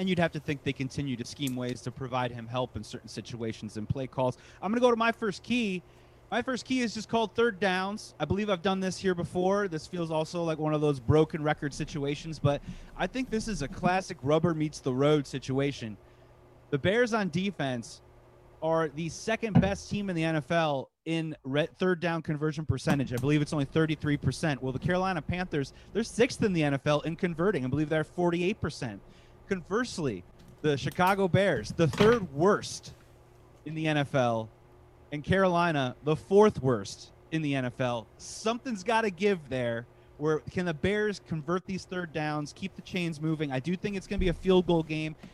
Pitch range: 145-190 Hz